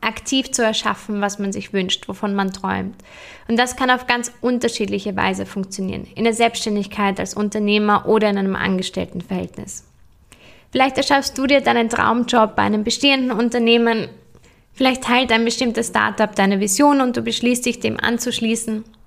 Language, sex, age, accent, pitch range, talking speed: German, female, 20-39, German, 205-245 Hz, 155 wpm